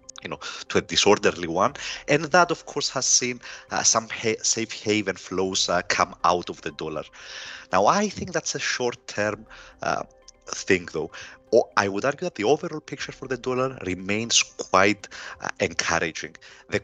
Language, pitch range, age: English, 100-145 Hz, 30-49